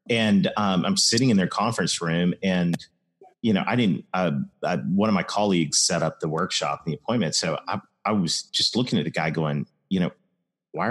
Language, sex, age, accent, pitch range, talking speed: English, male, 40-59, American, 90-125 Hz, 205 wpm